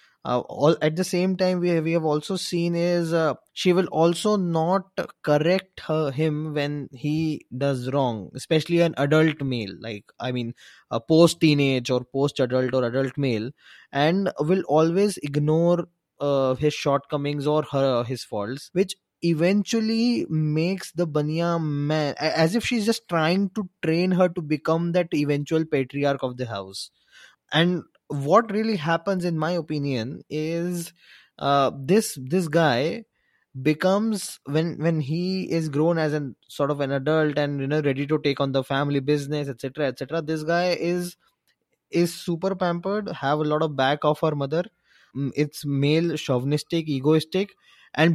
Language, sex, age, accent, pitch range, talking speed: Hindi, male, 20-39, native, 145-175 Hz, 160 wpm